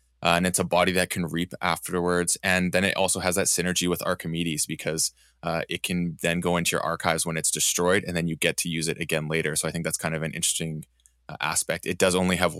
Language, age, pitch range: English, 20-39, 80-90 Hz